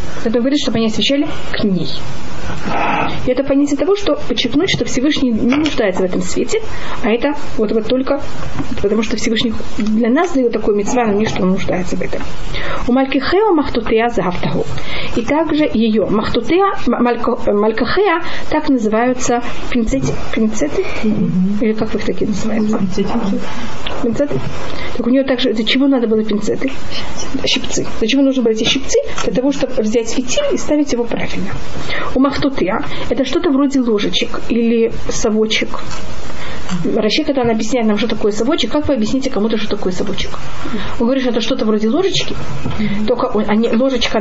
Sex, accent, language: female, native, Russian